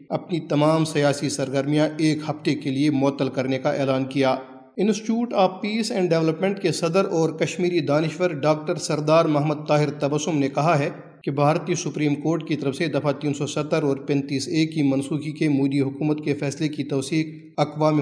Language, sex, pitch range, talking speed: Urdu, male, 140-160 Hz, 185 wpm